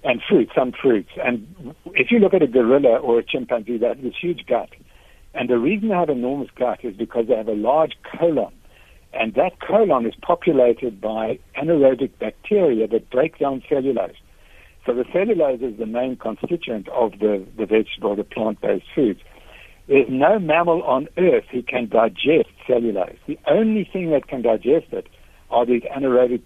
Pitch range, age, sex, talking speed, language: 110-145 Hz, 60-79, male, 175 wpm, English